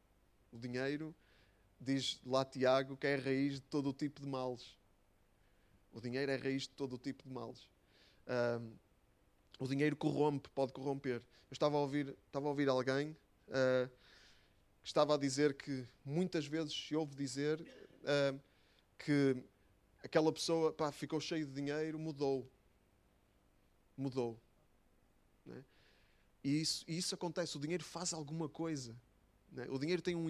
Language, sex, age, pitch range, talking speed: Portuguese, male, 20-39, 125-160 Hz, 140 wpm